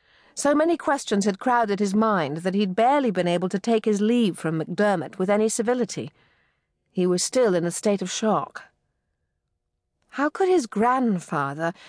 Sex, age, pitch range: female, 50-69, 185-240 Hz